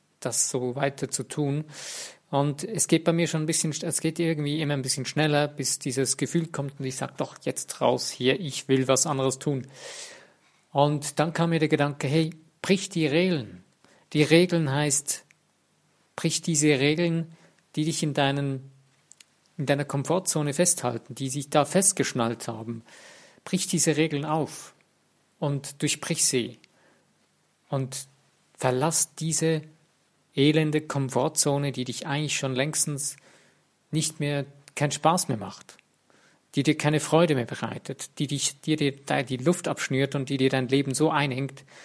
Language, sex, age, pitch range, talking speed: German, male, 50-69, 135-160 Hz, 155 wpm